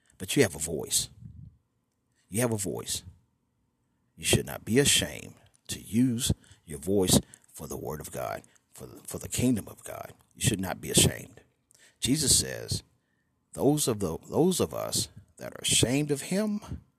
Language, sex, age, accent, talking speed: English, male, 50-69, American, 170 wpm